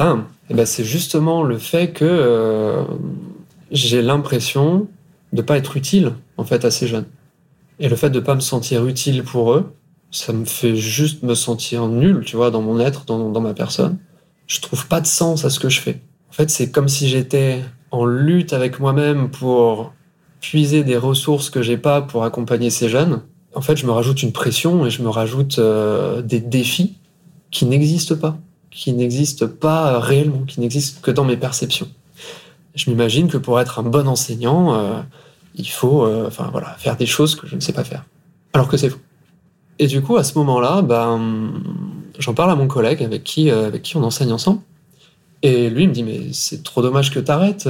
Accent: French